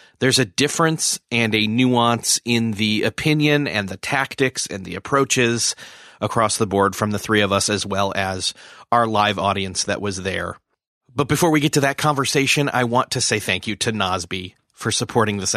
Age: 30-49